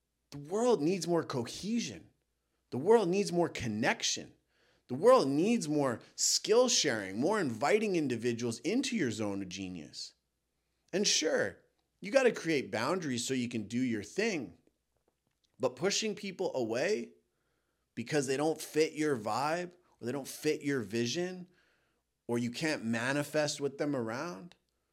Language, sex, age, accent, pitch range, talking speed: English, male, 30-49, American, 110-170 Hz, 145 wpm